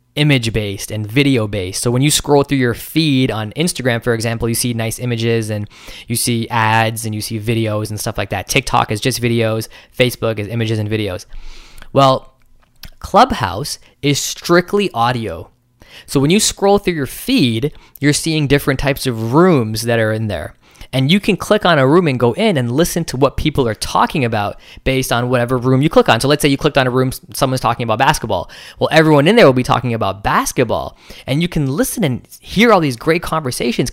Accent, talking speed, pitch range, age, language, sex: American, 210 wpm, 115-150 Hz, 10-29, English, male